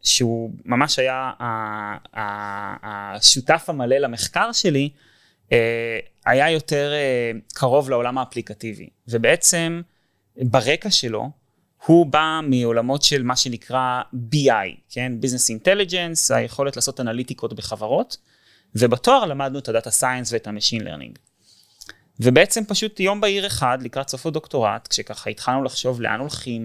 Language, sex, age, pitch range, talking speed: Hebrew, male, 20-39, 115-145 Hz, 115 wpm